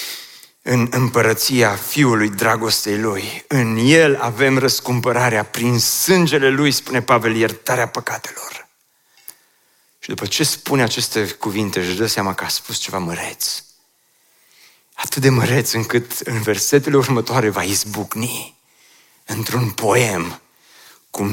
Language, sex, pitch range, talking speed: Romanian, male, 115-150 Hz, 120 wpm